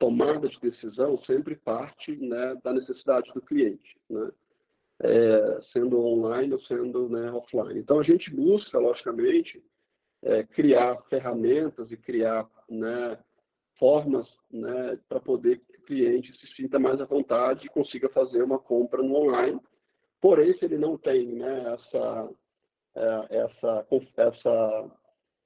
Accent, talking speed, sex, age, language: Brazilian, 130 wpm, male, 50-69, Portuguese